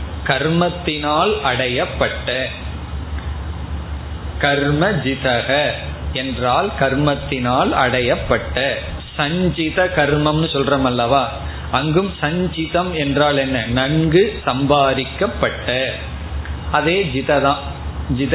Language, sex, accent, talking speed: Tamil, male, native, 55 wpm